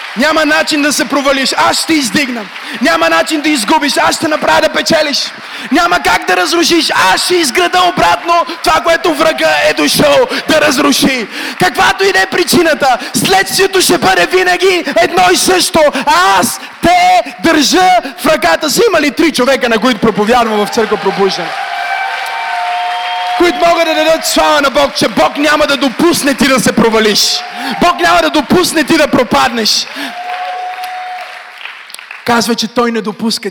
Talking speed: 155 wpm